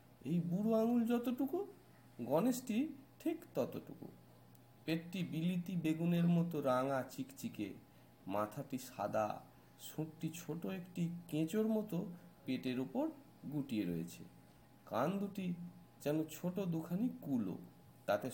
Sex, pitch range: male, 125-180 Hz